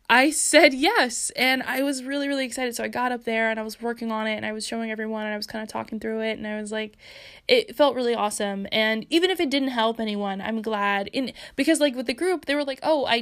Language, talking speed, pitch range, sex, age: English, 275 wpm, 215-270 Hz, female, 10-29